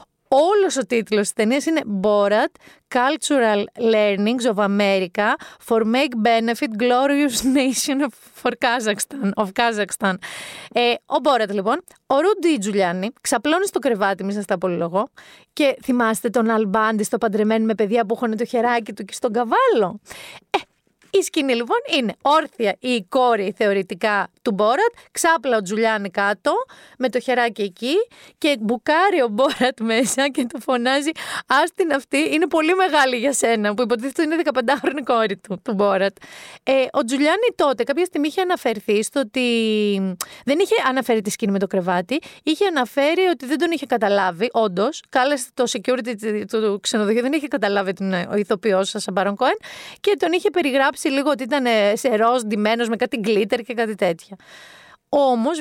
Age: 30-49